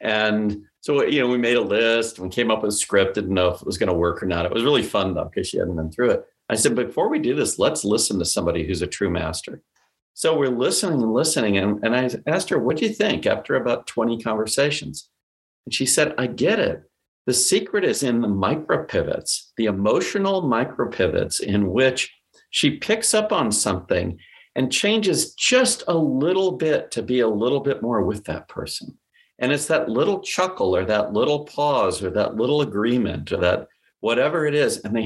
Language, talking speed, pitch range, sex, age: English, 215 wpm, 105-150 Hz, male, 50-69